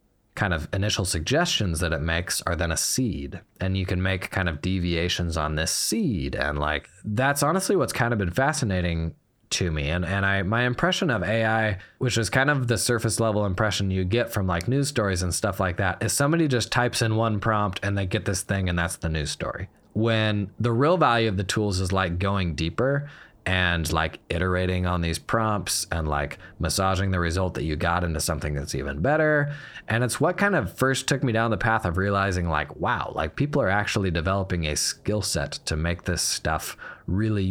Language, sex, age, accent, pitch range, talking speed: English, male, 20-39, American, 90-125 Hz, 210 wpm